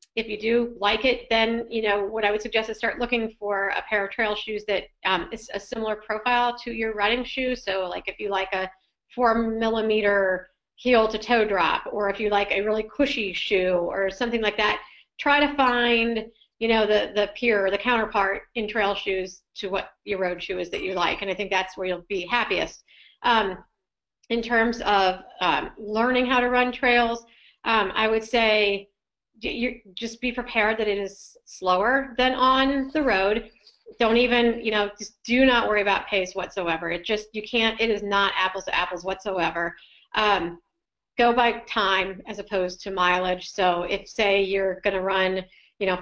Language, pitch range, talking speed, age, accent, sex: English, 195-235 Hz, 195 wpm, 40-59, American, female